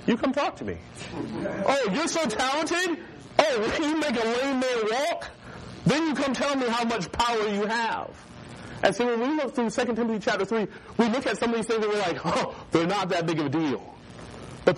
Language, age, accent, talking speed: English, 40-59, American, 240 wpm